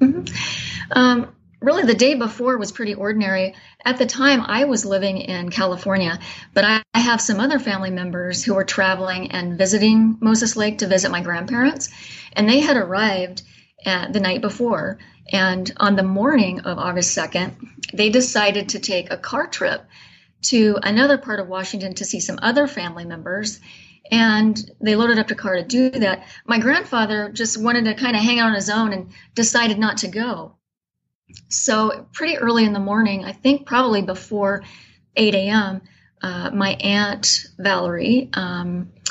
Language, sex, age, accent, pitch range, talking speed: English, female, 30-49, American, 190-235 Hz, 170 wpm